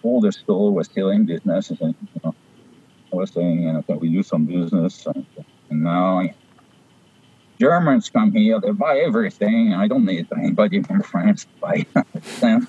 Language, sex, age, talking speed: English, male, 50-69, 180 wpm